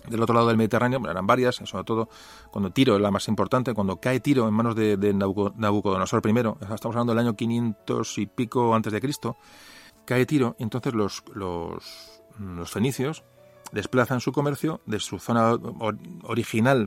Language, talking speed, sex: Spanish, 175 wpm, male